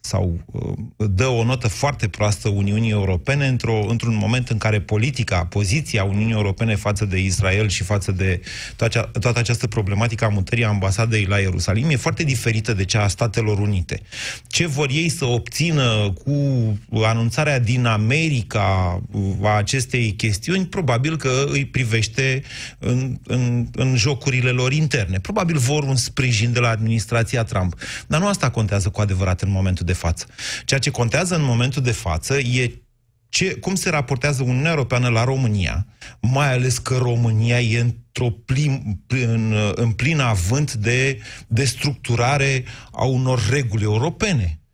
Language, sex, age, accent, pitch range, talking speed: Romanian, male, 30-49, native, 105-135 Hz, 150 wpm